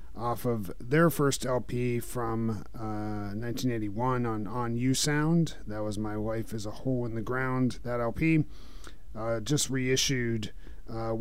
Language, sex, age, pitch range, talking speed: English, male, 30-49, 110-135 Hz, 150 wpm